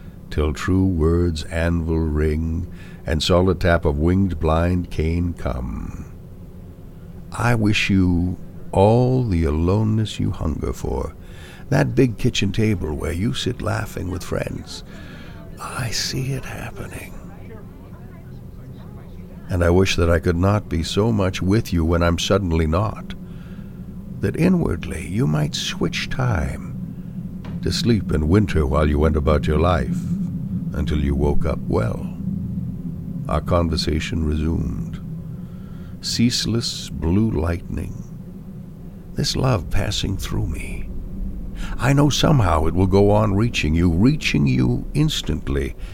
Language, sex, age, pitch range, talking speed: English, male, 60-79, 80-95 Hz, 125 wpm